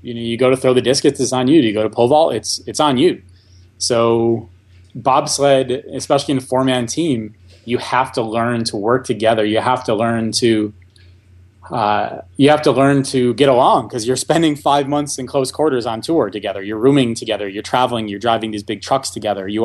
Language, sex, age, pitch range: Japanese, male, 20-39, 105-130 Hz